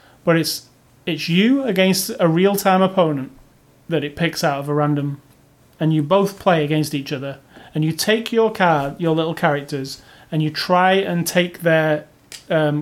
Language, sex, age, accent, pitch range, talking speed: English, male, 30-49, British, 145-175 Hz, 175 wpm